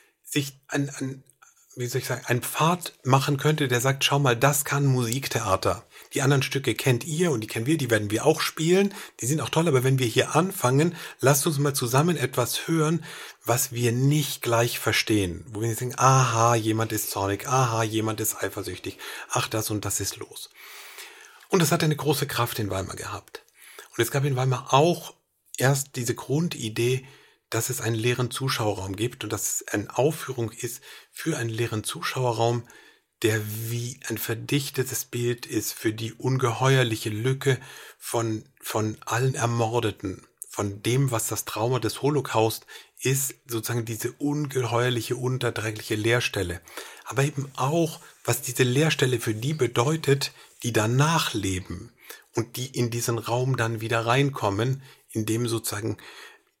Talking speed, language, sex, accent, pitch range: 165 wpm, German, male, German, 115-140 Hz